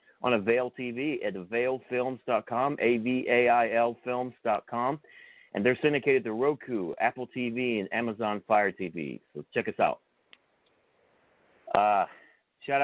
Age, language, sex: 40-59, English, male